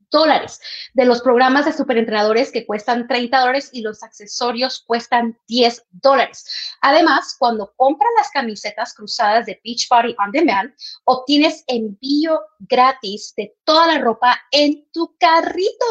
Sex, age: female, 30-49